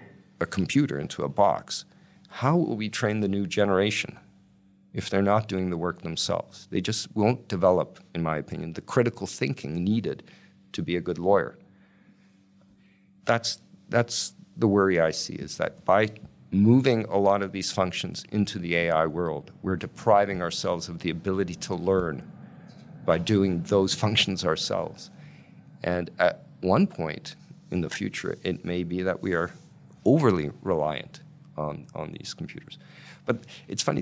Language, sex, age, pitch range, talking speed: Czech, male, 50-69, 90-110 Hz, 155 wpm